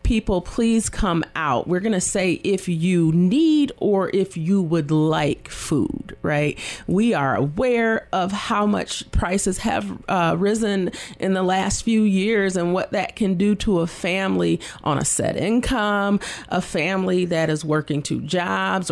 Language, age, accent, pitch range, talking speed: English, 40-59, American, 155-195 Hz, 165 wpm